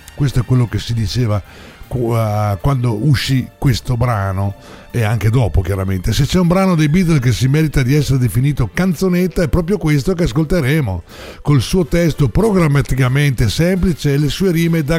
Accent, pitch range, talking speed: native, 115-155 Hz, 170 wpm